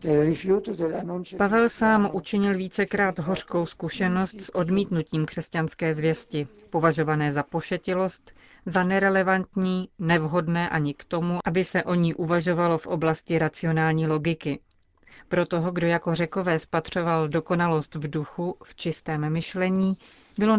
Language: Czech